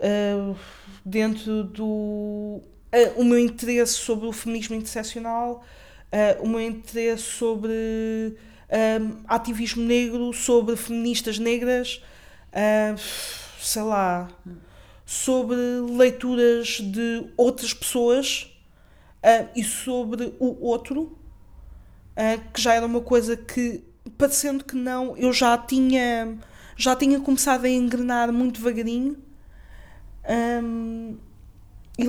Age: 20-39